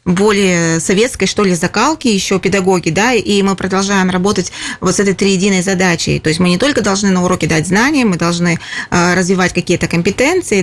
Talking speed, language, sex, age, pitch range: 180 wpm, Russian, female, 20-39, 190-235 Hz